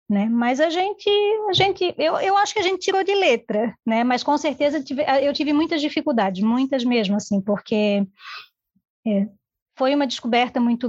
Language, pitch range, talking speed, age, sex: Portuguese, 235-285 Hz, 160 wpm, 20-39, female